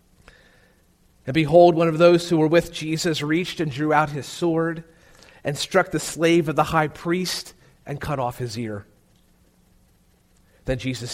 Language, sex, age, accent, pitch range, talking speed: English, male, 40-59, American, 130-180 Hz, 160 wpm